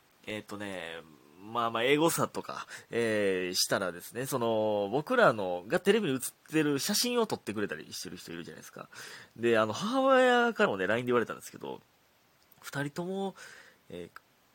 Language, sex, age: Japanese, male, 30-49